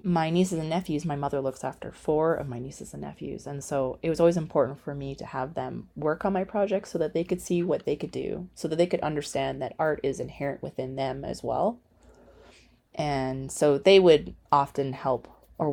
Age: 30-49